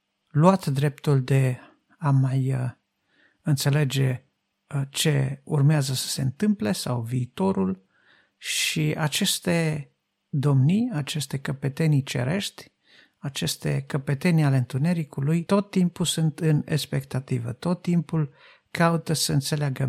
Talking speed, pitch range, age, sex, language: 100 wpm, 140-170 Hz, 50-69, male, Romanian